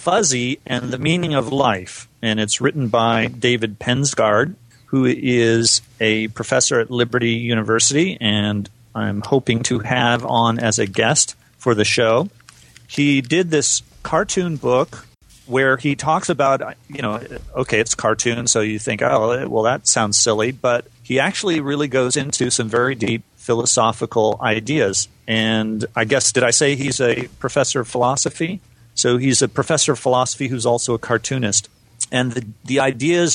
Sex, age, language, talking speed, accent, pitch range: male, 40-59, English, 160 wpm, American, 115-135 Hz